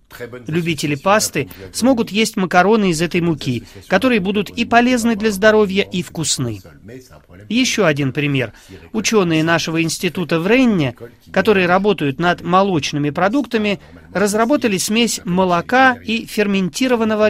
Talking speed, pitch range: 120 wpm, 145-210 Hz